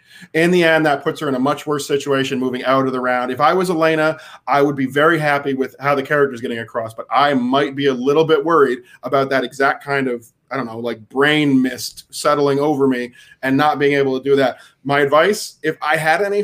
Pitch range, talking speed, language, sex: 135-160 Hz, 245 wpm, English, male